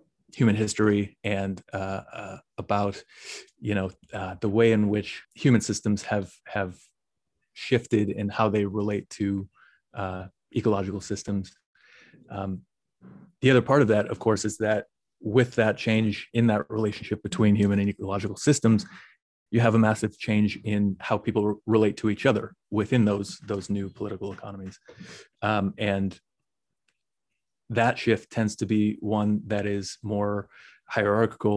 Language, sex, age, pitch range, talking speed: English, male, 30-49, 100-110 Hz, 150 wpm